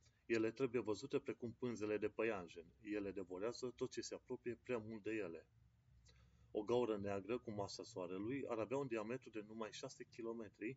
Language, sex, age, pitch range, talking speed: Romanian, male, 30-49, 100-120 Hz, 175 wpm